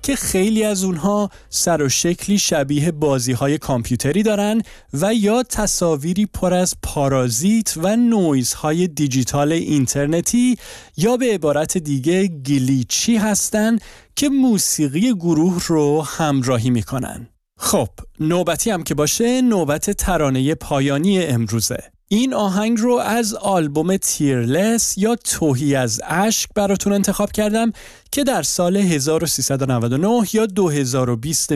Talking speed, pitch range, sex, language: 120 wpm, 140-210 Hz, male, Persian